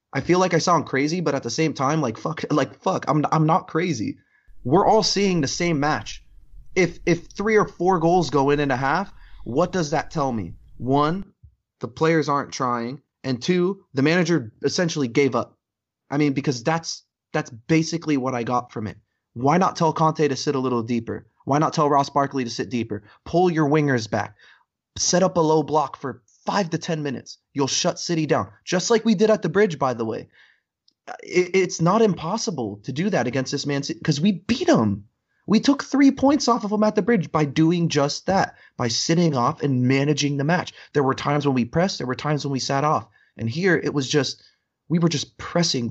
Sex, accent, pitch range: male, American, 125-170 Hz